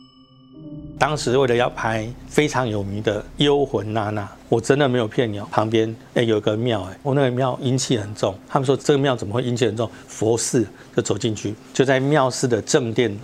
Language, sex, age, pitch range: Chinese, male, 50-69, 110-135 Hz